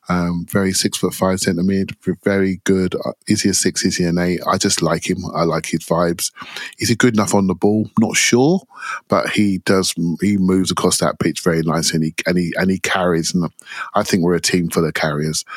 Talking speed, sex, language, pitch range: 225 wpm, male, English, 90-110 Hz